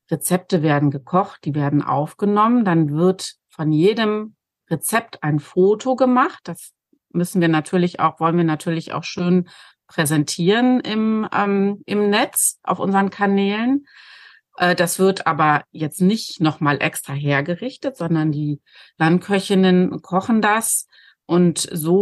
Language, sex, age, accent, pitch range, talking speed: German, female, 30-49, German, 165-205 Hz, 130 wpm